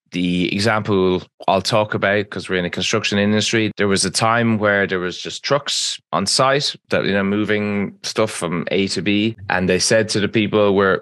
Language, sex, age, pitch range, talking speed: English, male, 20-39, 95-115 Hz, 205 wpm